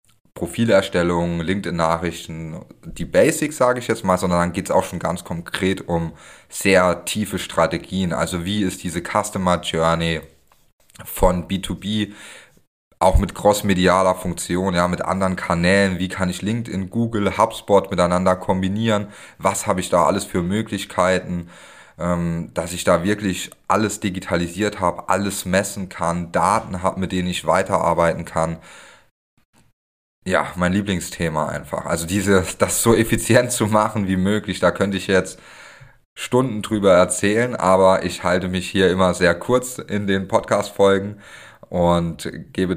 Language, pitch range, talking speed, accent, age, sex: German, 85-100 Hz, 140 wpm, German, 30-49, male